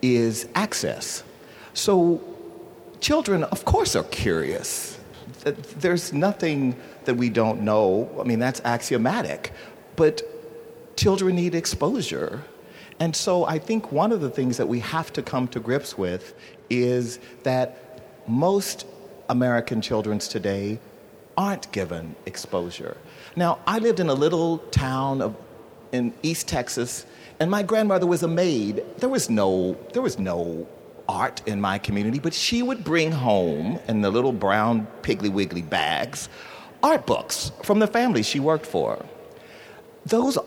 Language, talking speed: English, 140 wpm